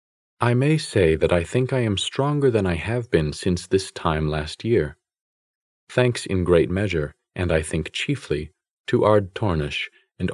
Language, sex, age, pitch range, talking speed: English, male, 40-59, 80-110 Hz, 175 wpm